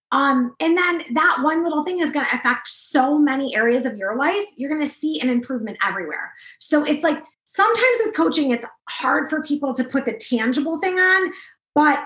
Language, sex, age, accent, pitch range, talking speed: English, female, 20-39, American, 235-310 Hz, 205 wpm